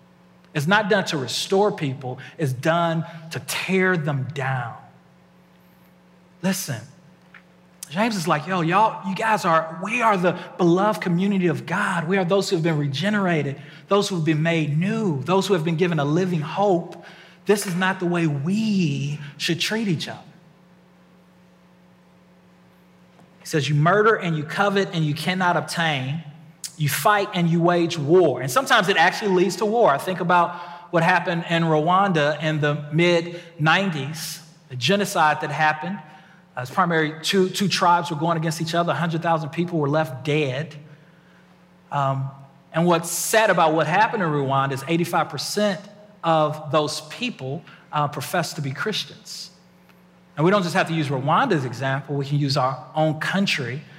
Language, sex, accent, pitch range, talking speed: English, male, American, 150-180 Hz, 165 wpm